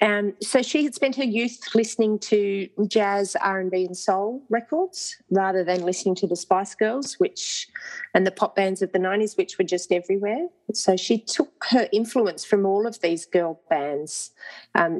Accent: Australian